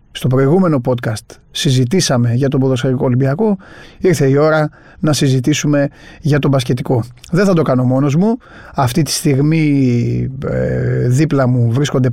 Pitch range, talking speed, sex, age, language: 130-160 Hz, 140 wpm, male, 30-49, Greek